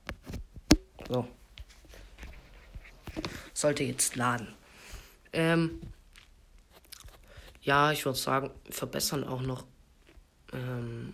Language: German